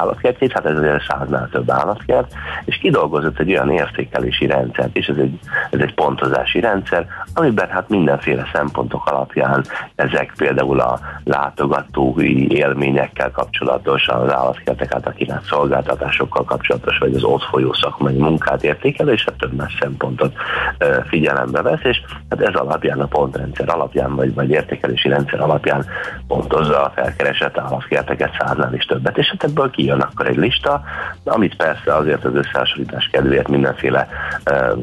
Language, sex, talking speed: Hungarian, male, 140 wpm